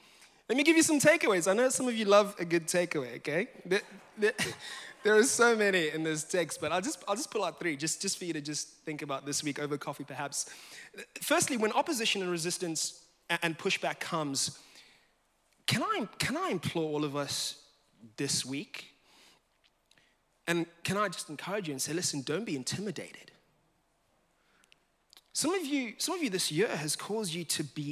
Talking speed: 190 wpm